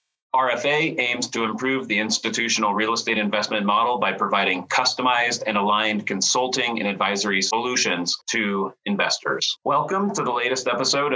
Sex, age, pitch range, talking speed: male, 30-49, 105-130 Hz, 140 wpm